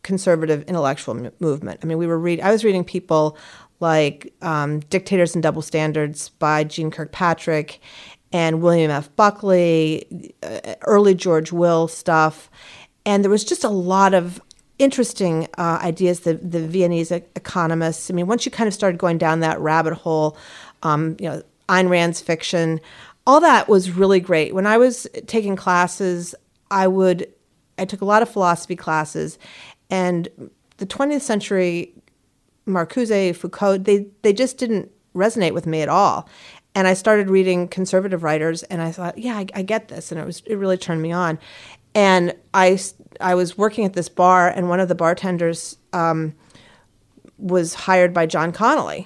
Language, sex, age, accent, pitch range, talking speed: English, female, 40-59, American, 160-190 Hz, 170 wpm